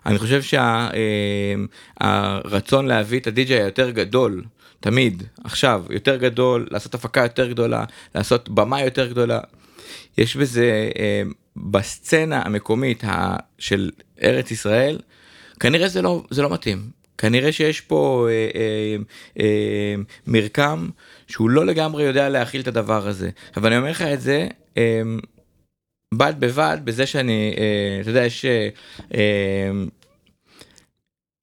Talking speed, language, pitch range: 130 wpm, Hebrew, 105-135 Hz